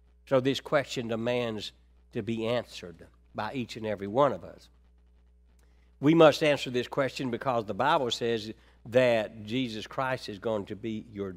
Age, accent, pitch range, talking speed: 60-79, American, 115-145 Hz, 165 wpm